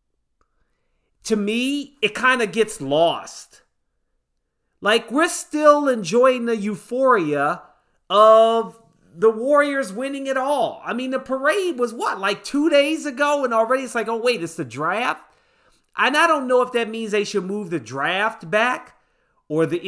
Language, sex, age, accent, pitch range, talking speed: English, male, 40-59, American, 175-250 Hz, 160 wpm